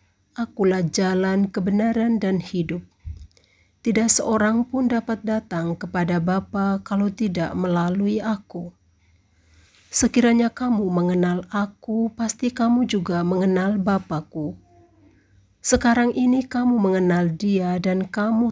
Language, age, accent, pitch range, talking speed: Indonesian, 50-69, native, 175-225 Hz, 105 wpm